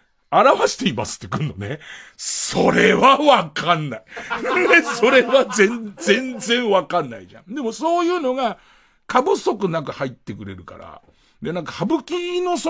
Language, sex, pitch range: Japanese, male, 170-270 Hz